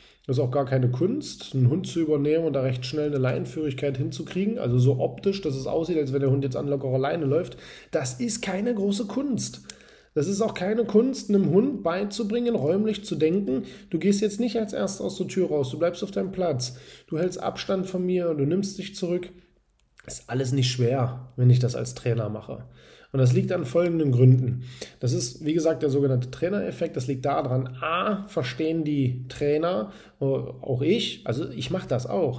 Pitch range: 130-170 Hz